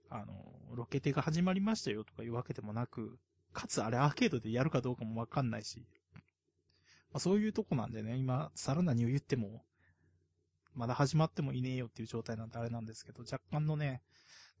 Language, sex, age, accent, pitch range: Japanese, male, 20-39, native, 110-140 Hz